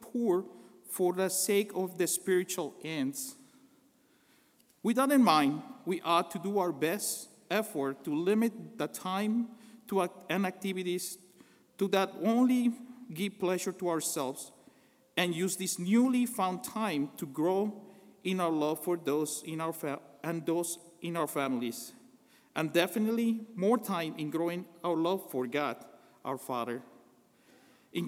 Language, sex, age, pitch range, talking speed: English, male, 50-69, 165-225 Hz, 145 wpm